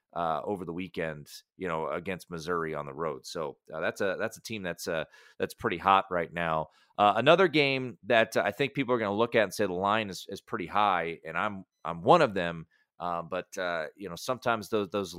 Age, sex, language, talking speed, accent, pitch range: 30-49, male, English, 235 wpm, American, 95-120 Hz